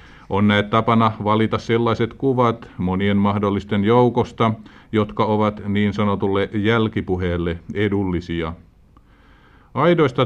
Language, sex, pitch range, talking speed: Finnish, male, 95-120 Hz, 95 wpm